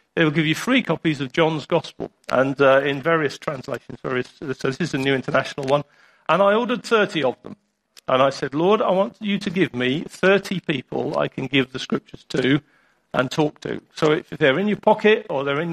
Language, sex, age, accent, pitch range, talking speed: English, male, 50-69, British, 145-200 Hz, 220 wpm